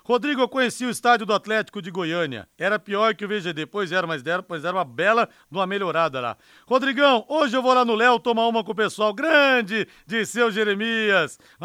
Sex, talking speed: male, 210 wpm